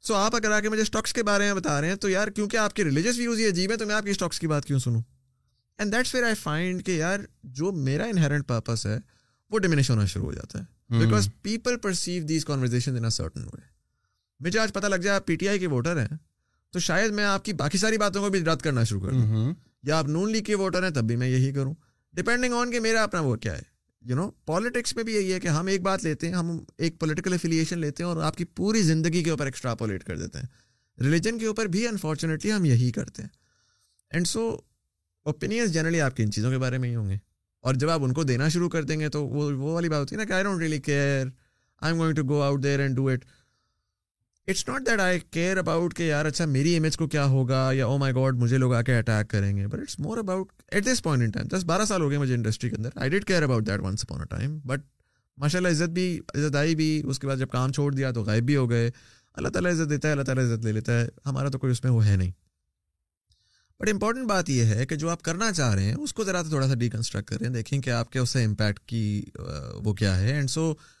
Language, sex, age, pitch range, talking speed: Urdu, male, 20-39, 120-185 Hz, 190 wpm